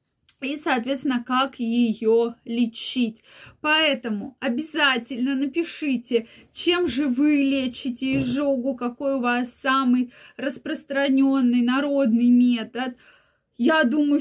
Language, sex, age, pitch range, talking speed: Russian, female, 20-39, 235-285 Hz, 95 wpm